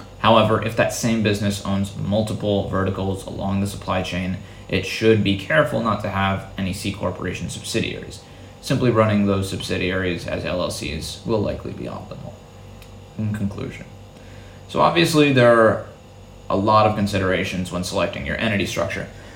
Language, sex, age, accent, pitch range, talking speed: English, male, 20-39, American, 100-120 Hz, 150 wpm